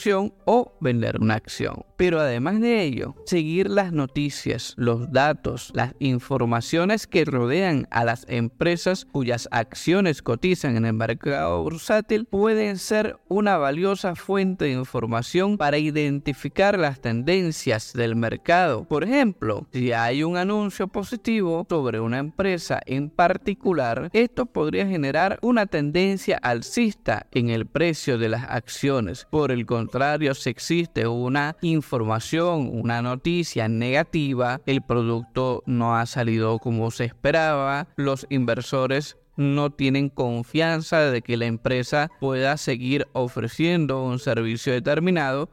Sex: male